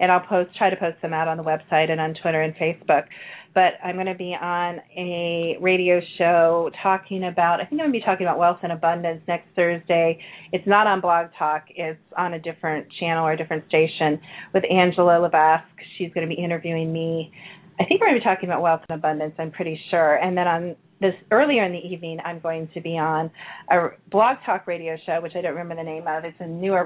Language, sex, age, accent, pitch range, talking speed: English, female, 30-49, American, 165-185 Hz, 235 wpm